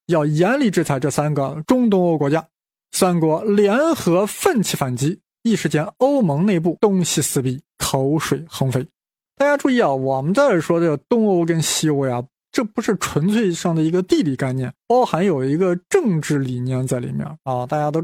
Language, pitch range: Chinese, 145-195 Hz